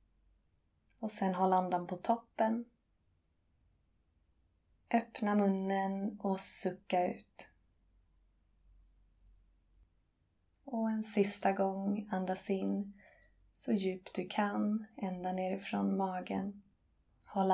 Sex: female